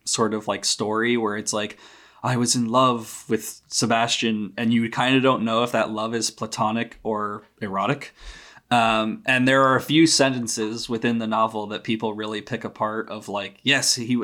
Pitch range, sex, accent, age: 105-120 Hz, male, American, 20-39